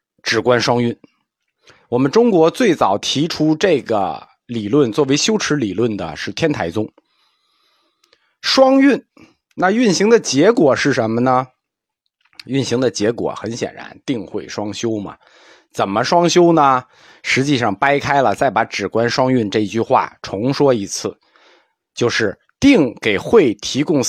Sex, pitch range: male, 115-170 Hz